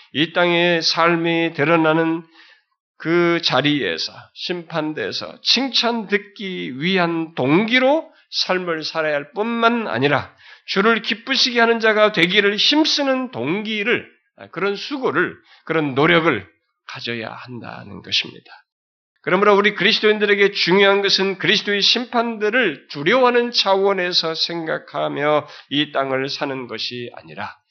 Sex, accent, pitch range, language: male, native, 155-215 Hz, Korean